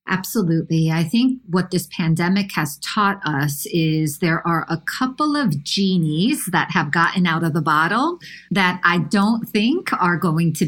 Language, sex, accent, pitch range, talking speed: English, female, American, 155-190 Hz, 170 wpm